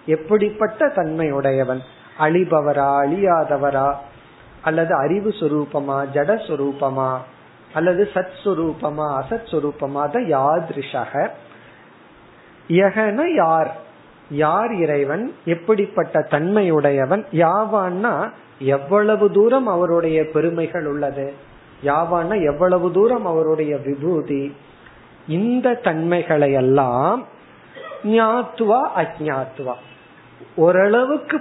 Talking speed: 65 wpm